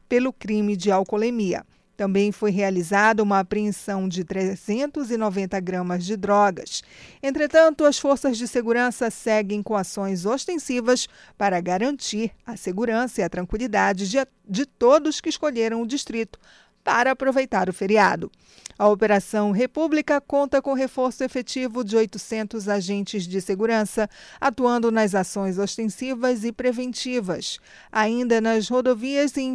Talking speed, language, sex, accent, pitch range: 130 wpm, Portuguese, female, Brazilian, 205-255 Hz